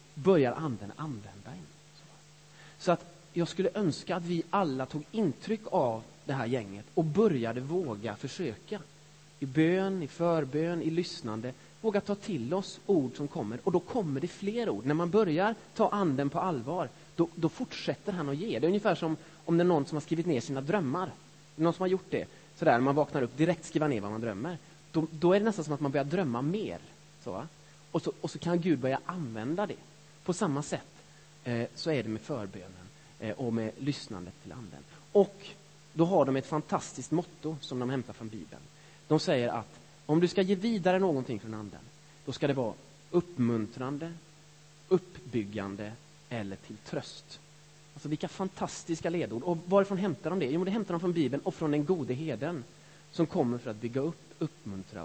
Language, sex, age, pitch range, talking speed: Swedish, male, 30-49, 135-175 Hz, 195 wpm